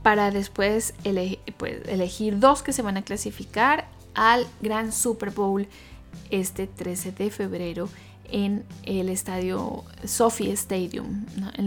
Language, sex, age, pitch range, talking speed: Spanish, female, 20-39, 180-205 Hz, 120 wpm